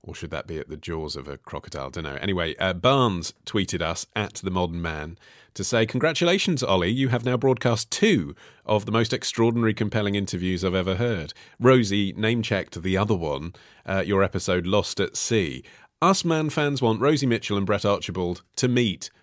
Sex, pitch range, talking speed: male, 90-130 Hz, 195 wpm